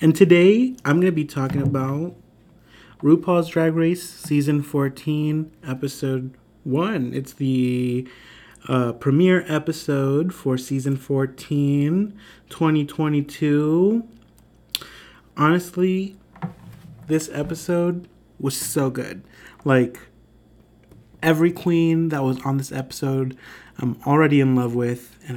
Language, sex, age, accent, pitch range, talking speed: English, male, 30-49, American, 130-165 Hz, 105 wpm